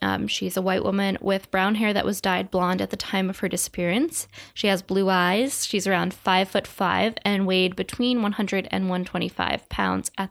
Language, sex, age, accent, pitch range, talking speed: English, female, 10-29, American, 185-215 Hz, 205 wpm